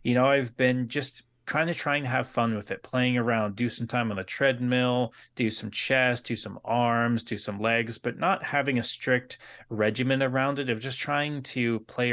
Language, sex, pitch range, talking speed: English, male, 110-130 Hz, 215 wpm